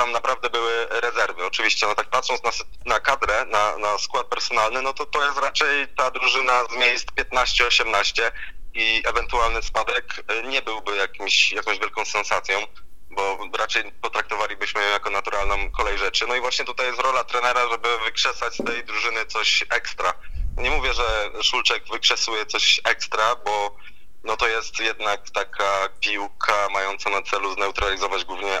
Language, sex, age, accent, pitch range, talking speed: Polish, male, 20-39, native, 100-125 Hz, 155 wpm